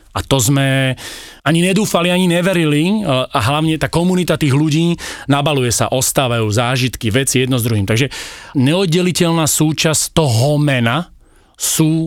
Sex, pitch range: male, 125-165 Hz